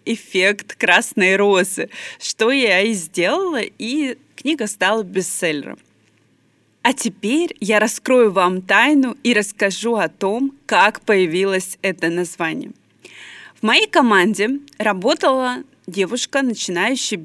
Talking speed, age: 110 wpm, 20-39